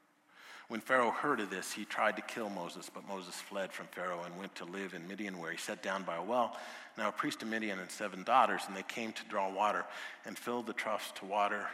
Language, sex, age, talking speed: English, male, 50-69, 245 wpm